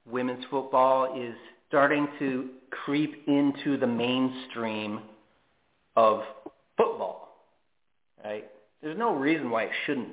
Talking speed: 105 wpm